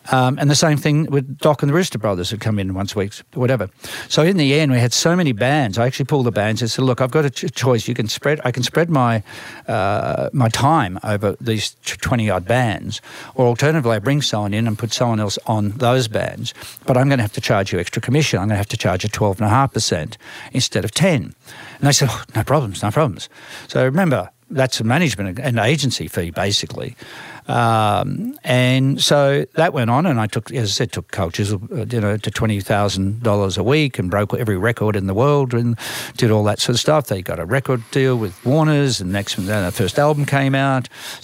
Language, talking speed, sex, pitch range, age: English, 225 wpm, male, 105-140 Hz, 60-79